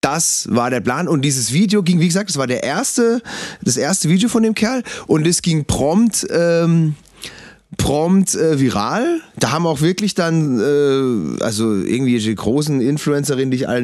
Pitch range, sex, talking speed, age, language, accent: 125-165 Hz, male, 180 wpm, 30-49, German, German